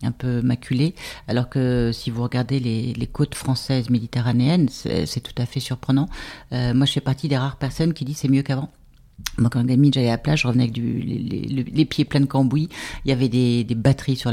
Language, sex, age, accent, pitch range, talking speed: French, female, 40-59, French, 125-150 Hz, 240 wpm